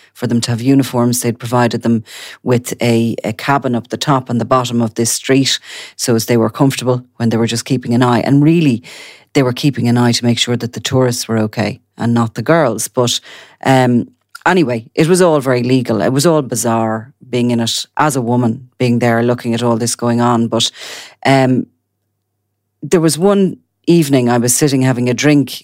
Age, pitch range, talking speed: 40-59, 120-135 Hz, 210 wpm